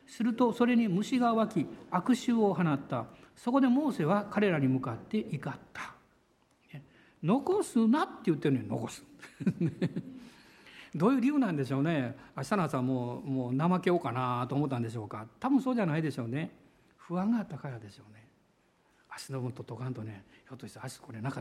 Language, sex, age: Japanese, male, 60-79